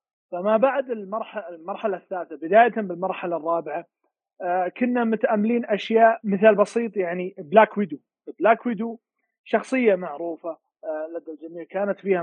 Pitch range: 170-220 Hz